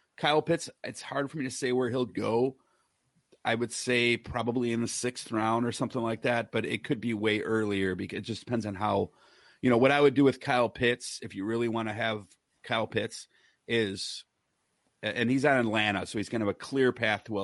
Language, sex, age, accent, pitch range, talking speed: English, male, 30-49, American, 105-135 Hz, 230 wpm